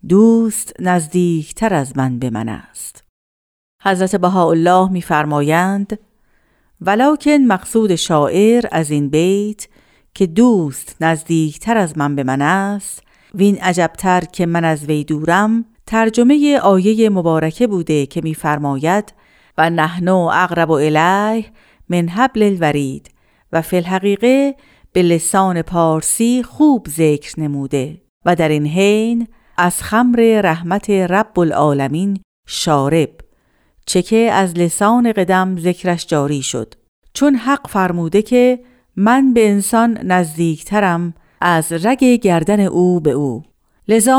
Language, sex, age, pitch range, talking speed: Persian, female, 50-69, 160-220 Hz, 115 wpm